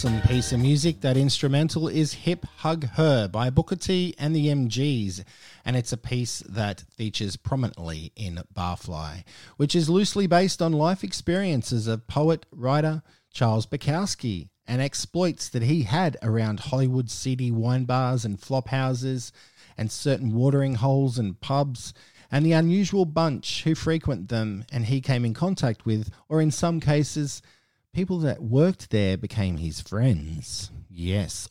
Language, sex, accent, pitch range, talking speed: English, male, Australian, 105-150 Hz, 150 wpm